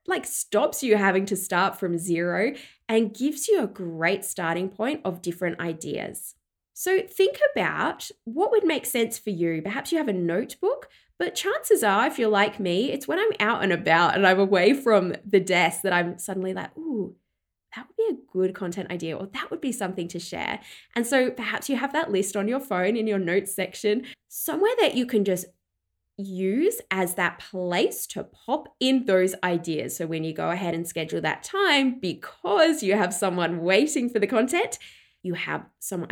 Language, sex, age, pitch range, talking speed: English, female, 20-39, 180-265 Hz, 195 wpm